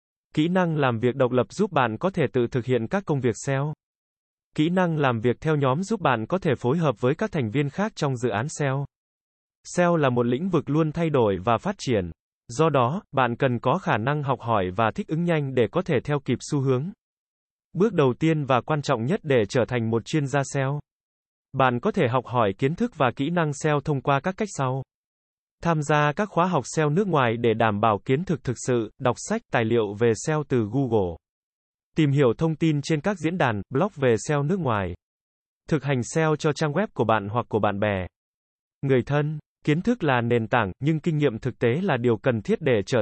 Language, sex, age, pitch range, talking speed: Vietnamese, male, 20-39, 120-160 Hz, 230 wpm